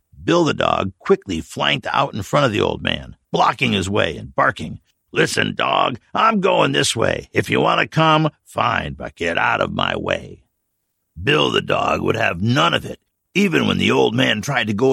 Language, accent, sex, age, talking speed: English, American, male, 60-79, 205 wpm